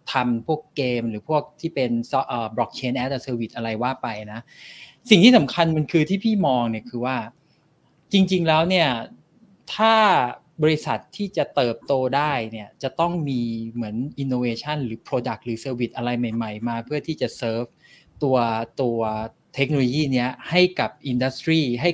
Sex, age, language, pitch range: male, 20-39, Thai, 120-155 Hz